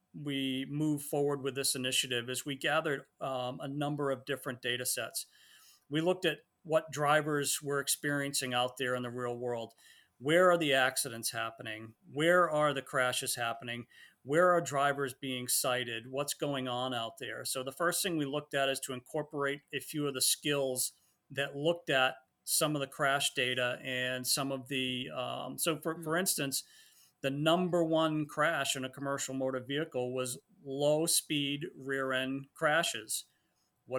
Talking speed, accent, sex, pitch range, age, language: 170 wpm, American, male, 130-155 Hz, 40-59, English